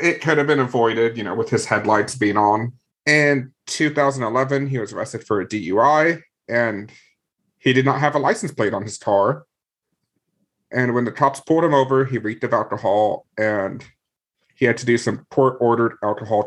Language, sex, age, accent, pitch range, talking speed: English, male, 30-49, American, 110-145 Hz, 185 wpm